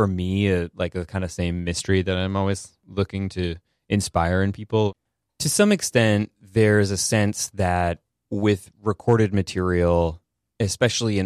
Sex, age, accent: male, 20-39, American